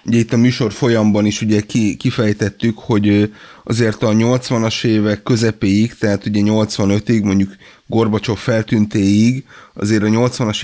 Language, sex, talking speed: Hungarian, male, 130 wpm